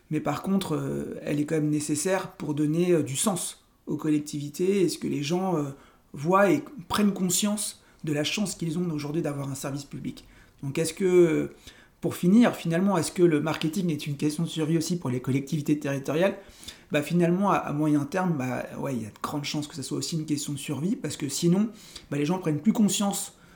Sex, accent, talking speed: male, French, 225 wpm